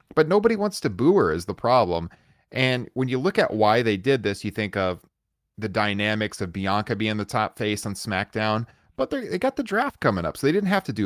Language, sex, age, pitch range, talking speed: English, male, 30-49, 100-135 Hz, 240 wpm